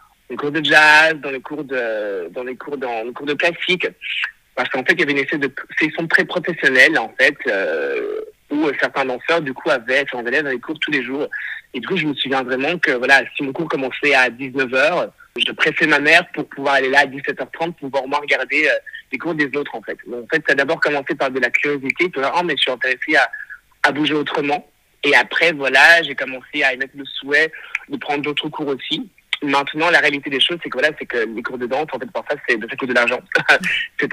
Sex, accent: male, French